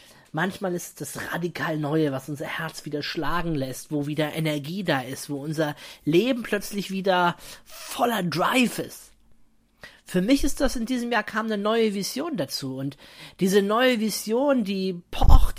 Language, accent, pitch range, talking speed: German, German, 160-205 Hz, 165 wpm